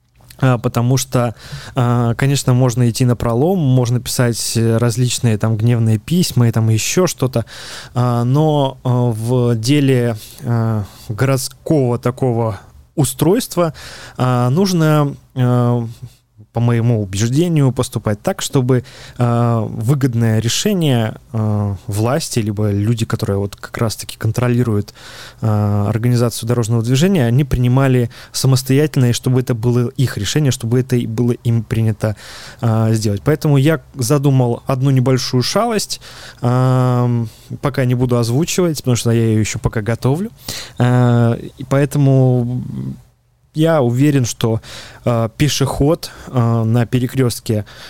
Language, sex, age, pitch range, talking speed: Russian, male, 20-39, 115-135 Hz, 115 wpm